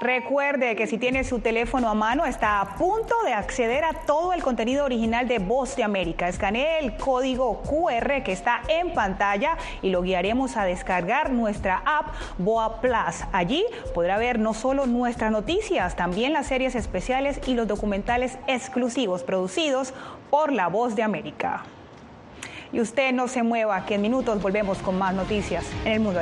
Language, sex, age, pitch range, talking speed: Spanish, female, 30-49, 185-260 Hz, 170 wpm